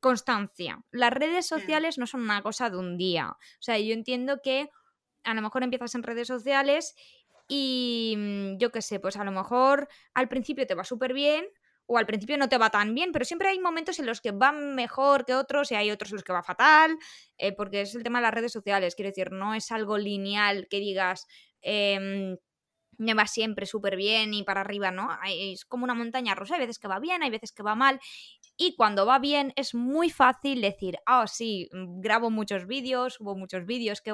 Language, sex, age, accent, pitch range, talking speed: Spanish, female, 20-39, Spanish, 195-260 Hz, 220 wpm